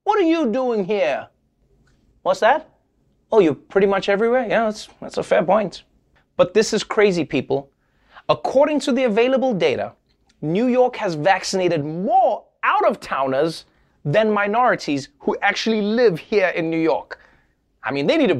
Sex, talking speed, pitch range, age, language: male, 165 wpm, 195-270 Hz, 30-49, English